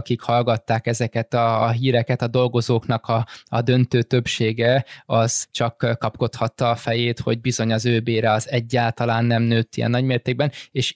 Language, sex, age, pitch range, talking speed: Hungarian, male, 20-39, 115-125 Hz, 155 wpm